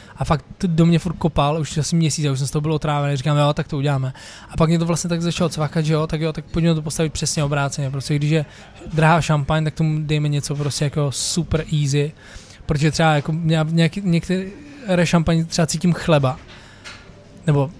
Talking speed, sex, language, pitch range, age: 200 wpm, male, Czech, 145-165 Hz, 20-39